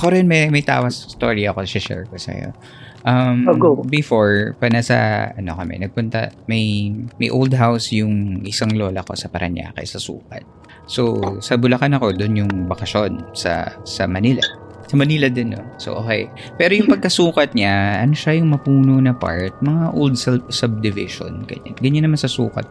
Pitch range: 100-130 Hz